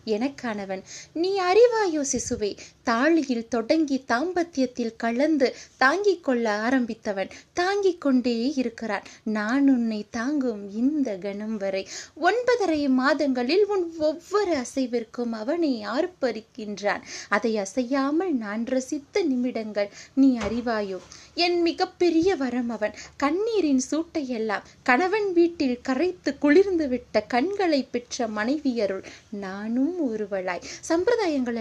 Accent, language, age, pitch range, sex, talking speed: native, Tamil, 20-39, 225-325 Hz, female, 90 wpm